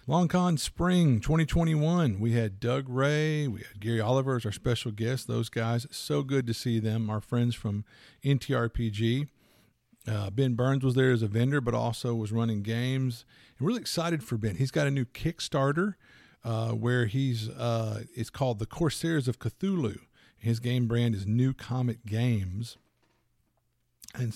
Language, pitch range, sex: English, 110-130 Hz, male